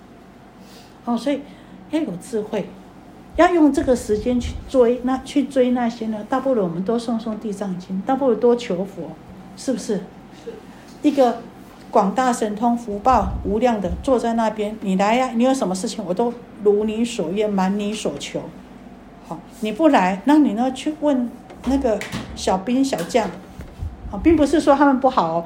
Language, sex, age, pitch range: Chinese, female, 50-69, 205-260 Hz